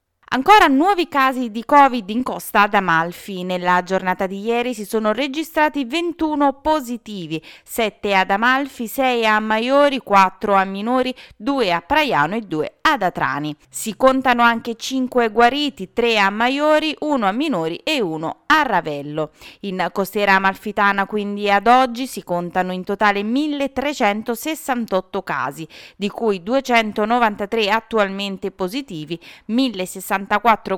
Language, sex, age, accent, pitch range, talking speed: Italian, female, 20-39, native, 185-260 Hz, 135 wpm